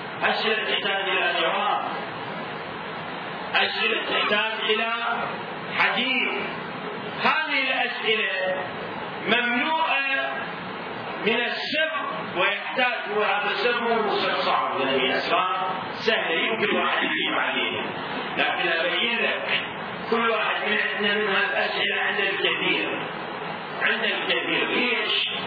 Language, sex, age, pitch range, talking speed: Arabic, male, 50-69, 210-245 Hz, 90 wpm